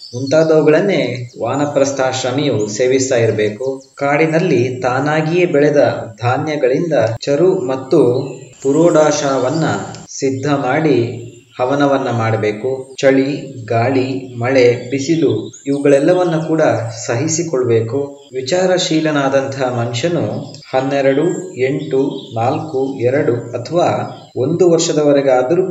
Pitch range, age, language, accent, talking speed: 125-150 Hz, 20-39, Kannada, native, 75 wpm